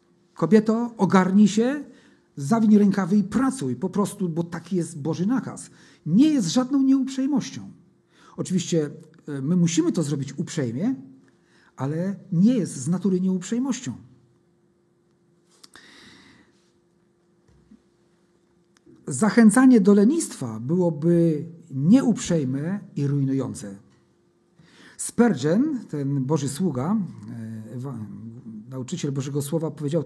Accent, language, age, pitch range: native, Polish, 50-69, 155-210 Hz